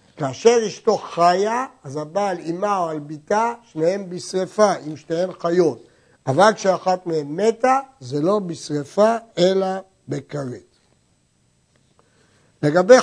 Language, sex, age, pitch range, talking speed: Hebrew, male, 60-79, 150-200 Hz, 110 wpm